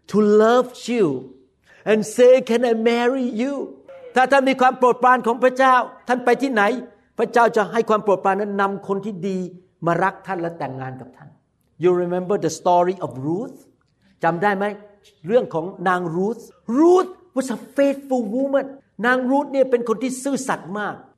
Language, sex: Thai, male